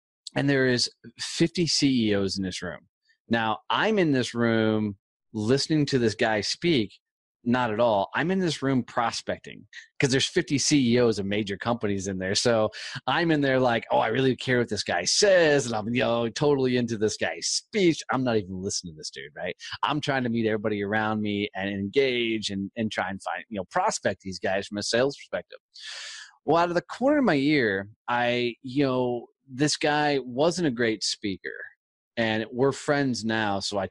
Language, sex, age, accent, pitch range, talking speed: English, male, 30-49, American, 105-140 Hz, 205 wpm